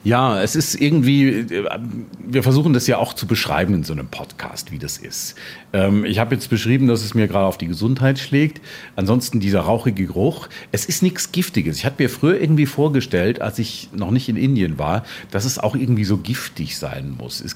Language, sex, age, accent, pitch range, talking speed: German, male, 40-59, German, 95-130 Hz, 205 wpm